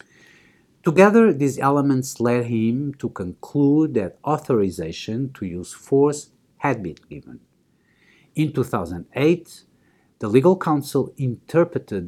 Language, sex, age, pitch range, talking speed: English, male, 50-69, 100-145 Hz, 105 wpm